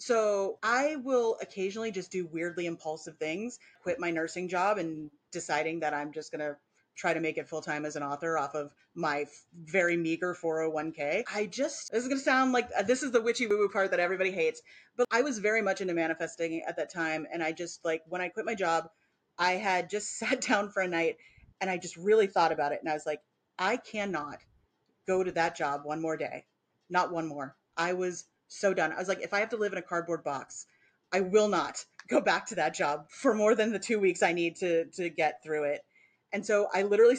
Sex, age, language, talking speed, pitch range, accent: female, 30-49, English, 230 wpm, 160-210 Hz, American